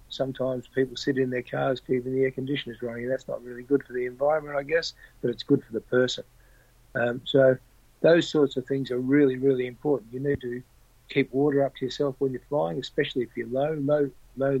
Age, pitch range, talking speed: 50-69, 120-135 Hz, 220 wpm